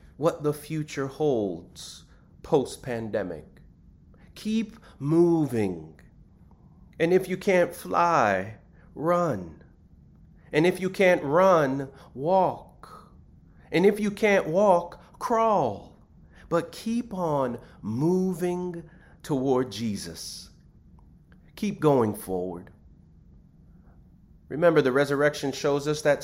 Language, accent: English, American